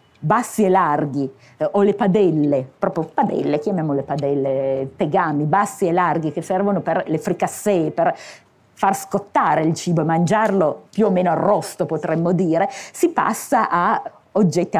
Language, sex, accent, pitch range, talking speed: Italian, female, native, 160-200 Hz, 145 wpm